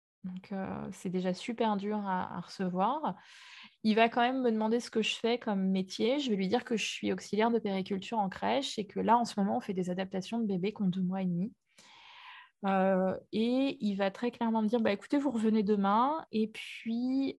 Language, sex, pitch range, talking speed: French, female, 195-240 Hz, 230 wpm